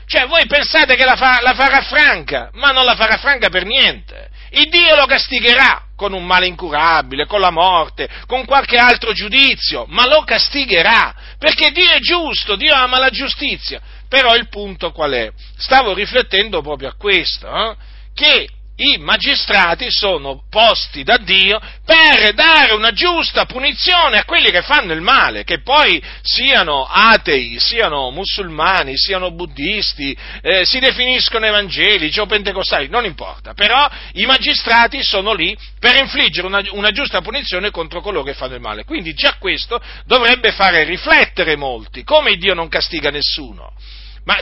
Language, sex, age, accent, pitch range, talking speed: Italian, male, 50-69, native, 175-275 Hz, 155 wpm